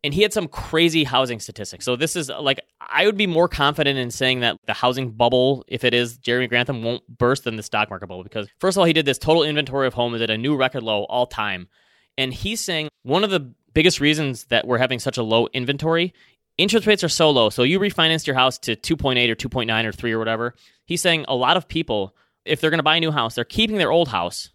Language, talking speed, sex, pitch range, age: English, 260 wpm, male, 115-155 Hz, 20-39